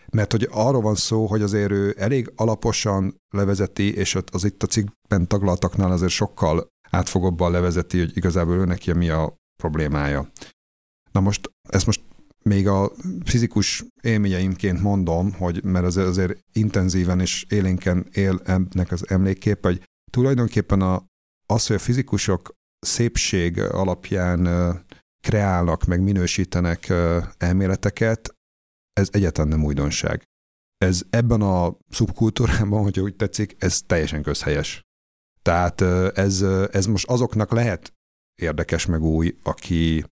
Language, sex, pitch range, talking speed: Hungarian, male, 85-100 Hz, 125 wpm